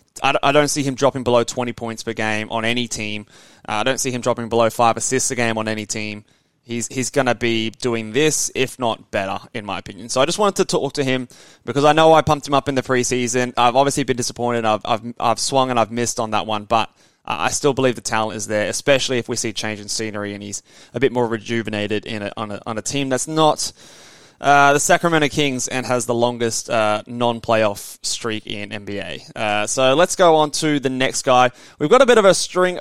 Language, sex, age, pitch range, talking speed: English, male, 20-39, 115-145 Hz, 240 wpm